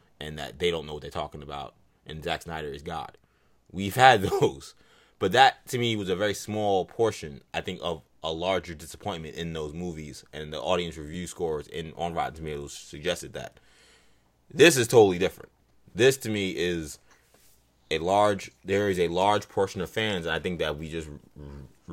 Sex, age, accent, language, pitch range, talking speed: male, 20-39, American, English, 80-100 Hz, 190 wpm